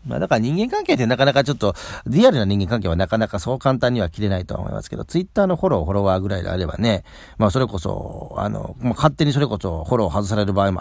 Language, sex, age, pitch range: Japanese, male, 40-59, 95-130 Hz